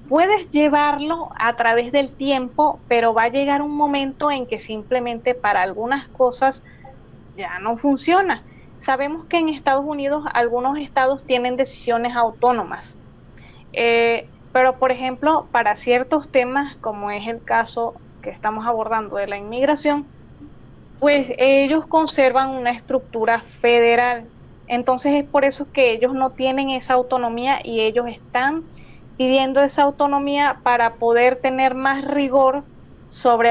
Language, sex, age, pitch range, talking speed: Spanish, female, 20-39, 235-280 Hz, 135 wpm